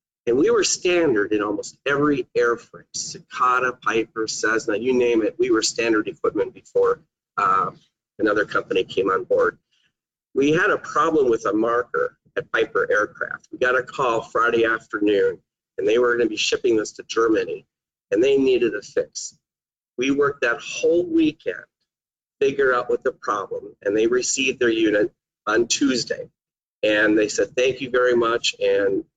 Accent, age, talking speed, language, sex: American, 40-59, 165 wpm, English, male